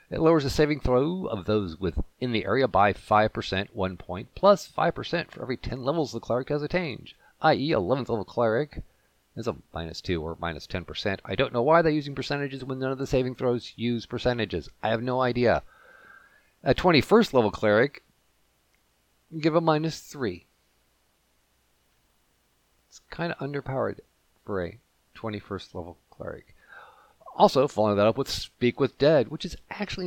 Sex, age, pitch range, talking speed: male, 50-69, 90-135 Hz, 165 wpm